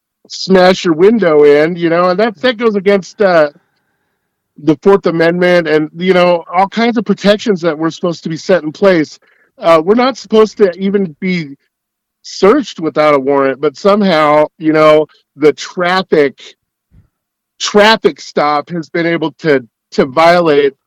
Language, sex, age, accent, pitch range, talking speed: English, male, 50-69, American, 145-180 Hz, 160 wpm